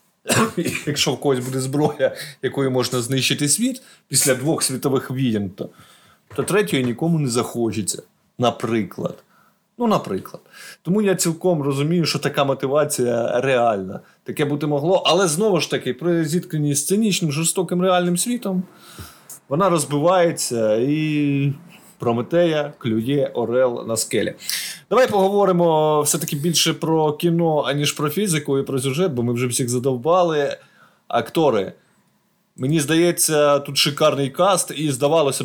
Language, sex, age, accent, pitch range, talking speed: Ukrainian, male, 20-39, native, 130-170 Hz, 130 wpm